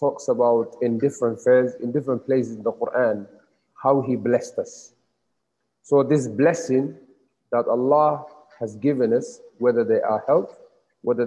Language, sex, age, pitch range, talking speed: English, male, 40-59, 120-165 Hz, 150 wpm